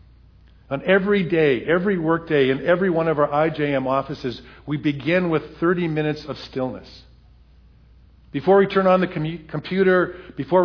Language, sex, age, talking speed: English, male, 50-69, 145 wpm